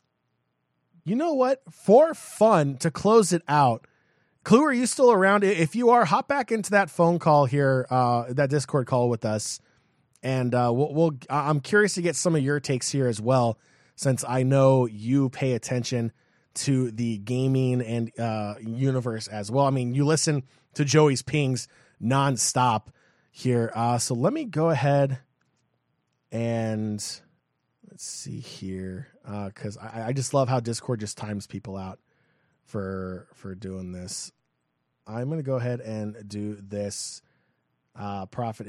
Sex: male